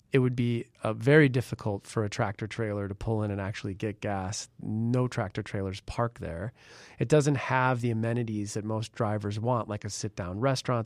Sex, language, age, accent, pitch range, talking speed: male, English, 30-49, American, 105-130 Hz, 180 wpm